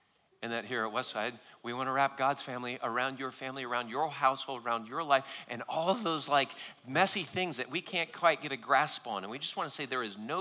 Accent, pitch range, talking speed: American, 115-155 Hz, 240 wpm